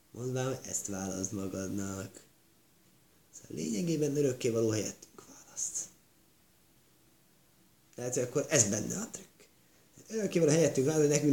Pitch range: 110-155 Hz